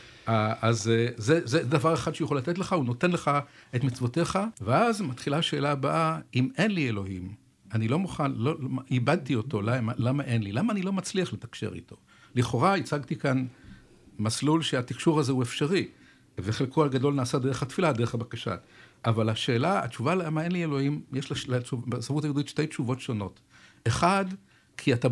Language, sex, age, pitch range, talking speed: Hebrew, male, 60-79, 115-165 Hz, 160 wpm